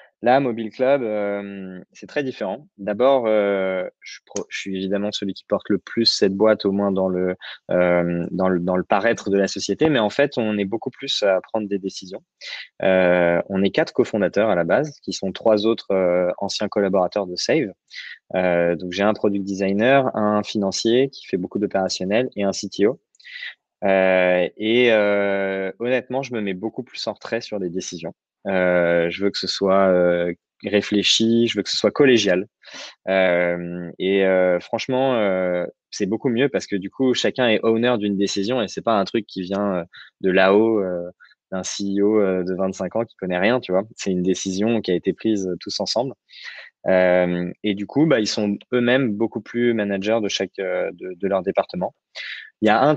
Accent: French